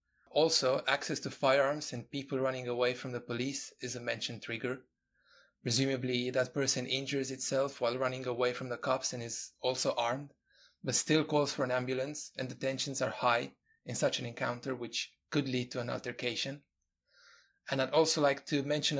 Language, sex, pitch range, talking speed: English, male, 125-140 Hz, 180 wpm